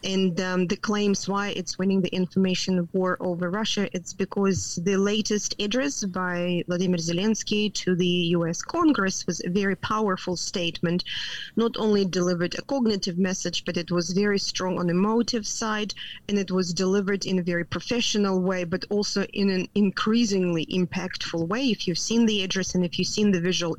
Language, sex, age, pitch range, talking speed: English, female, 20-39, 175-210 Hz, 180 wpm